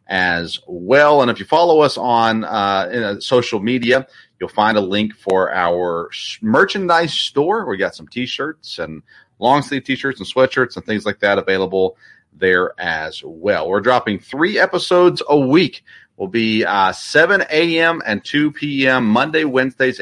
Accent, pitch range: American, 95-130 Hz